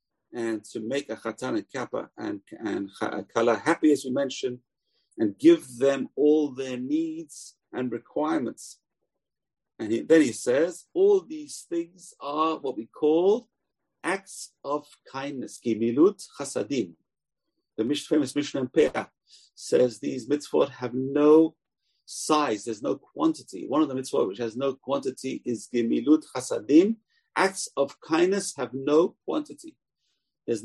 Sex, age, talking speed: male, 50-69, 135 wpm